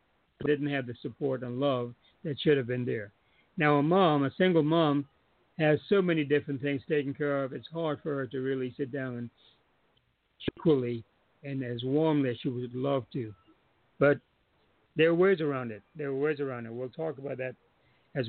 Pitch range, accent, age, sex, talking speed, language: 140-170 Hz, American, 60-79, male, 195 wpm, English